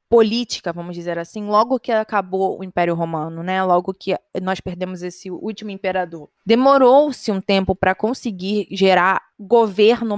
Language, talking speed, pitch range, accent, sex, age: Portuguese, 145 wpm, 205-280 Hz, Brazilian, female, 20-39